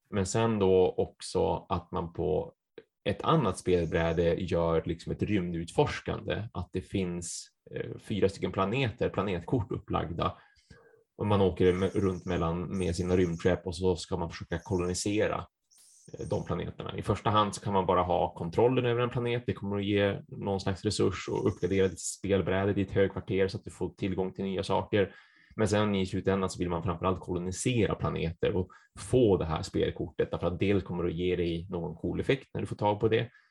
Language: Swedish